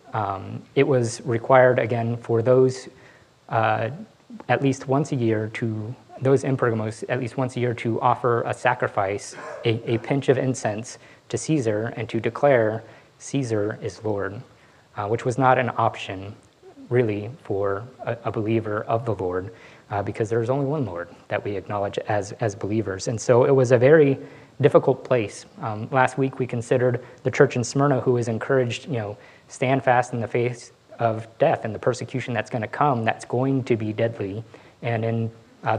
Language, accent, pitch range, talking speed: English, American, 110-130 Hz, 180 wpm